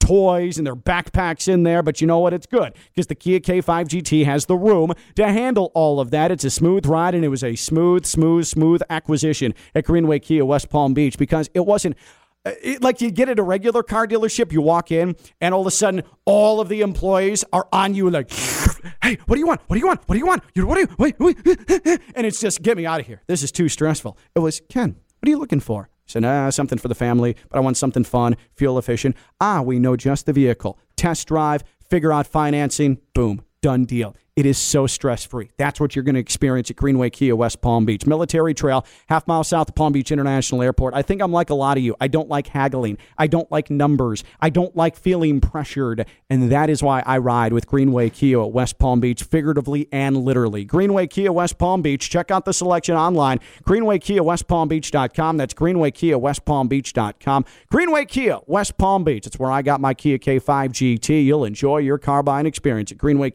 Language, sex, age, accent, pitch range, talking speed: English, male, 40-59, American, 135-180 Hz, 230 wpm